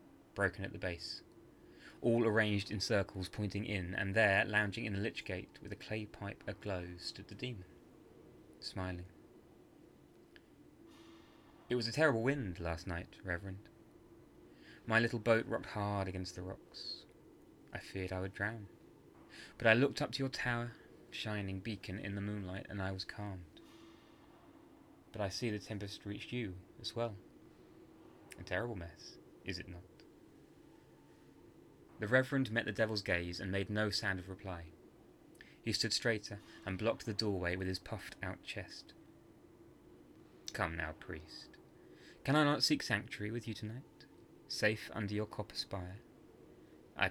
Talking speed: 150 wpm